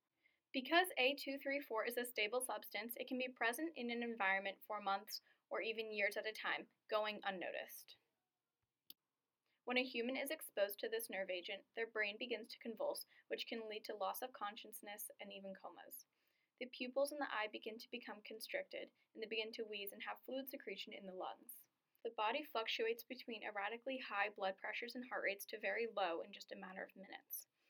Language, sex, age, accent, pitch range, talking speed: English, female, 10-29, American, 205-255 Hz, 190 wpm